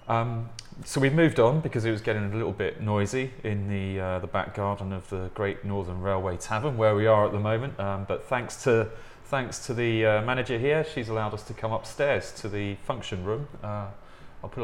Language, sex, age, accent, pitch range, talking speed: English, male, 30-49, British, 100-115 Hz, 215 wpm